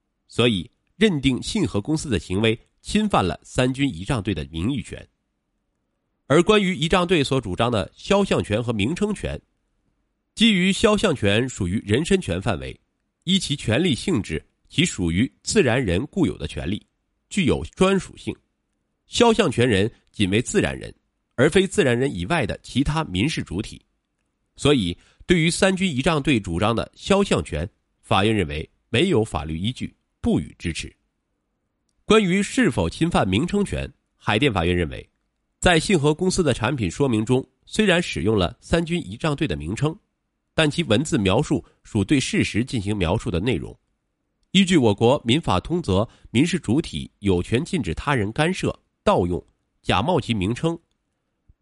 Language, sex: Chinese, male